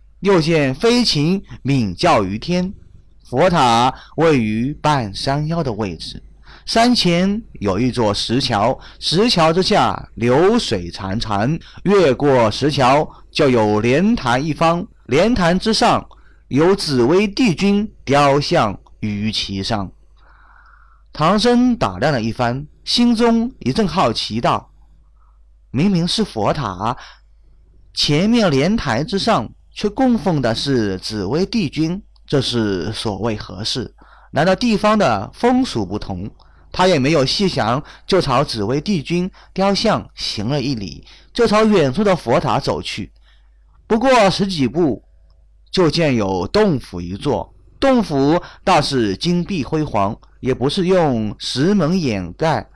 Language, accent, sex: Chinese, native, male